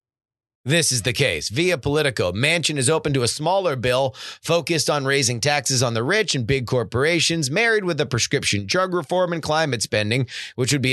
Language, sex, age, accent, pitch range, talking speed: English, male, 30-49, American, 120-165 Hz, 190 wpm